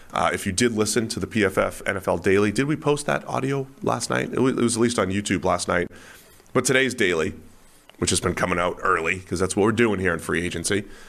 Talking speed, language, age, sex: 245 wpm, English, 30-49, male